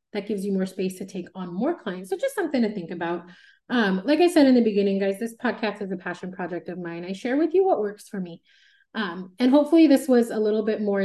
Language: English